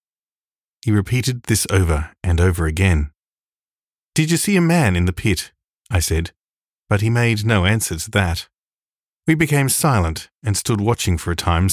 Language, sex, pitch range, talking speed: English, male, 85-120 Hz, 170 wpm